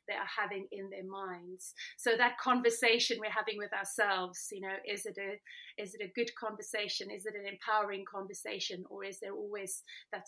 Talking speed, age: 195 wpm, 30-49